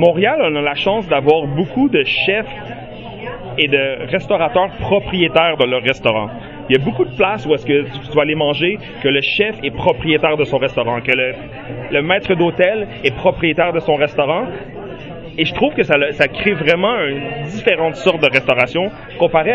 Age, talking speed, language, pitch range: 30-49, 185 wpm, French, 145-195 Hz